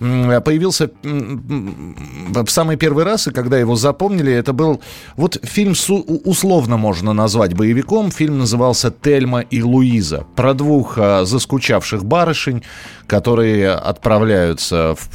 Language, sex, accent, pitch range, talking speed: Russian, male, native, 100-140 Hz, 115 wpm